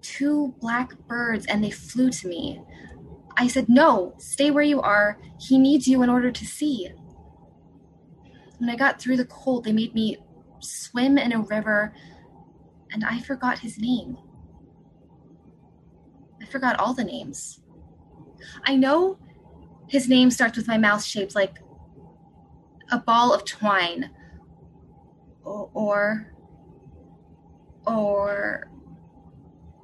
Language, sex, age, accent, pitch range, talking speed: English, female, 20-39, American, 215-270 Hz, 125 wpm